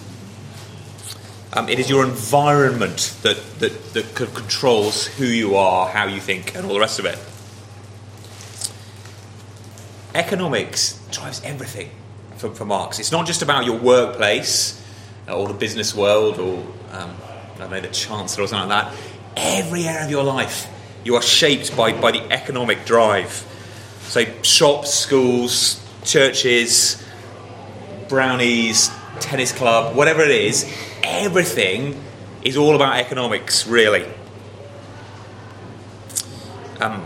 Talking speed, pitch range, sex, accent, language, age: 125 wpm, 105-130 Hz, male, British, English, 30-49